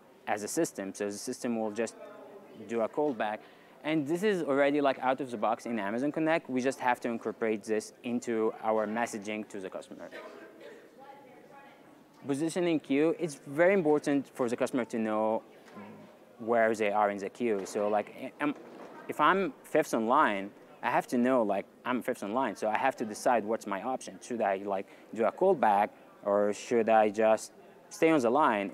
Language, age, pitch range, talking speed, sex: English, 20-39, 110-150 Hz, 180 wpm, male